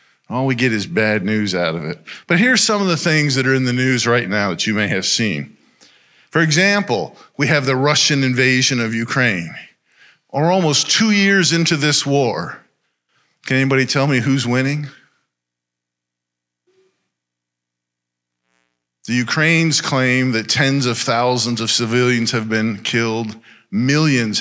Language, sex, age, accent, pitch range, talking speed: English, male, 50-69, American, 110-145 Hz, 150 wpm